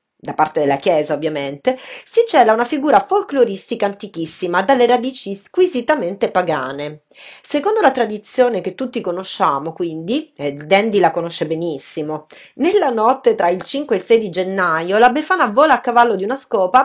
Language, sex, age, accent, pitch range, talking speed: English, female, 30-49, Italian, 180-275 Hz, 160 wpm